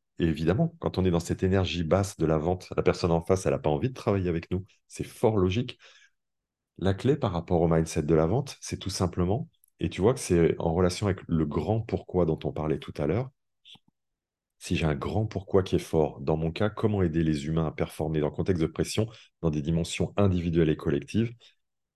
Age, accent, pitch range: 30-49, French, 80-105 Hz